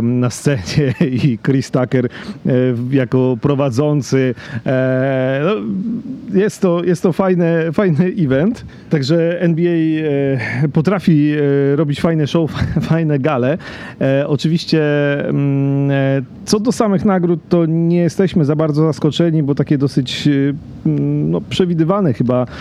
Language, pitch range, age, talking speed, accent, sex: Polish, 125-155 Hz, 40-59, 95 wpm, native, male